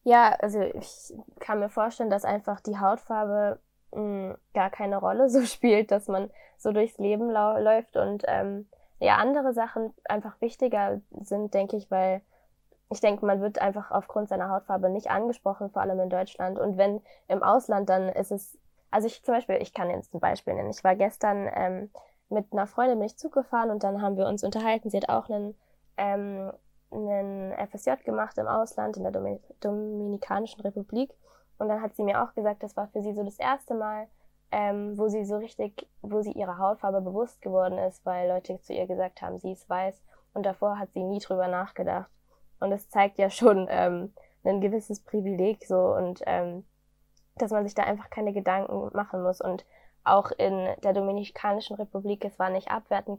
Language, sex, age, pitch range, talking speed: German, female, 10-29, 190-215 Hz, 190 wpm